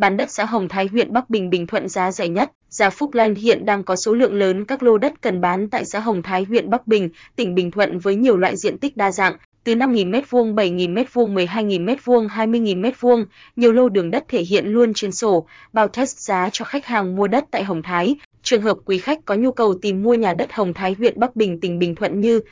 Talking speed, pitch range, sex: 250 wpm, 190-230 Hz, female